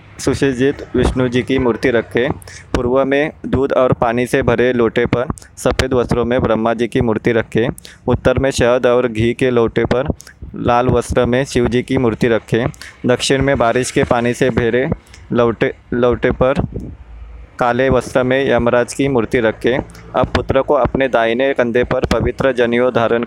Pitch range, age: 115-130 Hz, 20-39